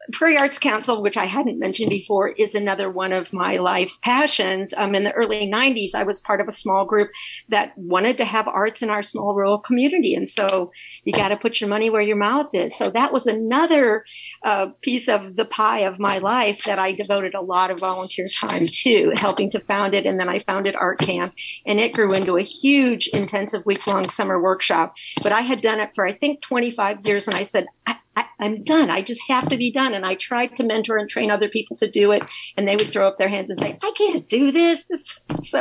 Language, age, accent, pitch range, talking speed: English, 50-69, American, 195-245 Hz, 230 wpm